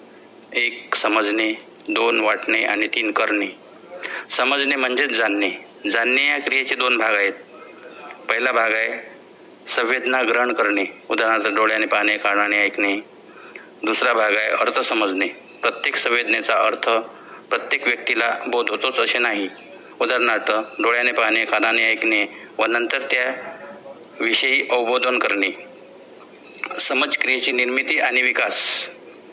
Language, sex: Marathi, male